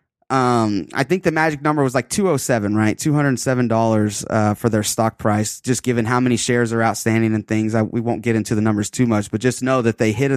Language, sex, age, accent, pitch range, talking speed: English, male, 20-39, American, 115-150 Hz, 270 wpm